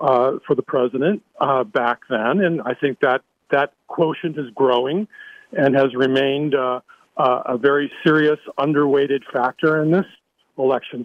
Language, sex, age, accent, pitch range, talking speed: English, male, 50-69, American, 135-180 Hz, 150 wpm